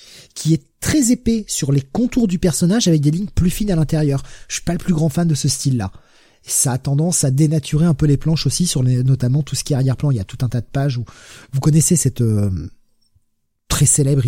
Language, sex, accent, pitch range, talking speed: French, male, French, 120-155 Hz, 250 wpm